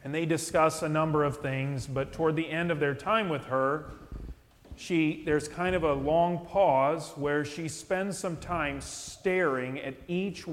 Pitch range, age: 125-160 Hz, 40-59